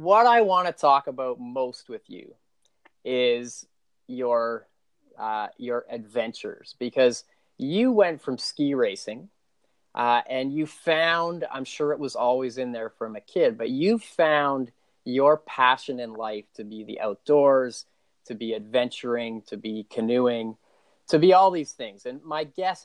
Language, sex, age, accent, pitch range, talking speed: English, male, 30-49, American, 115-145 Hz, 155 wpm